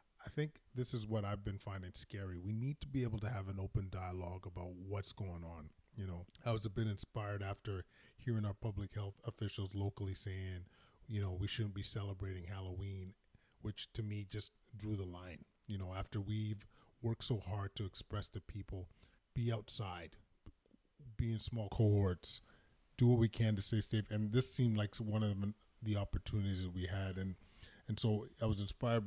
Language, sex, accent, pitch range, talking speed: English, male, American, 100-115 Hz, 190 wpm